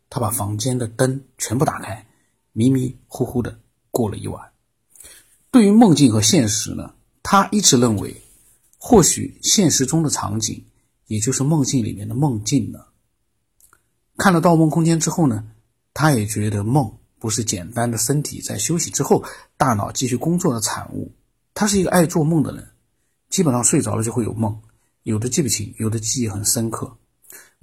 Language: Chinese